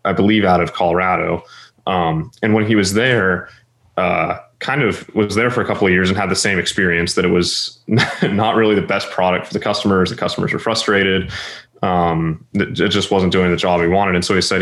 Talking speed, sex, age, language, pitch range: 220 wpm, male, 20-39, English, 90-110 Hz